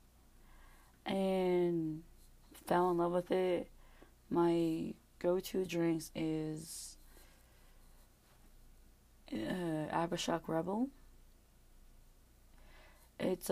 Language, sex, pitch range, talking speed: English, female, 155-180 Hz, 60 wpm